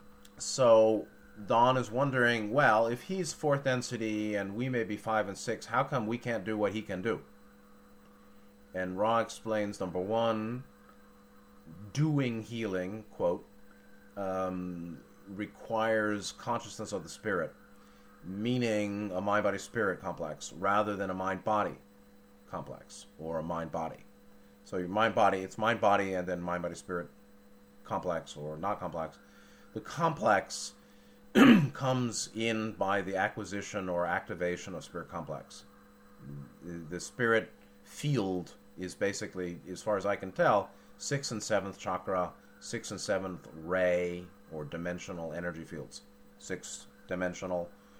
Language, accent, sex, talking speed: English, American, male, 135 wpm